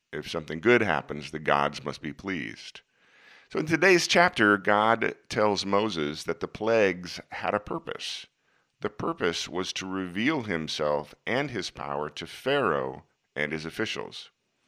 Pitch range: 80-115 Hz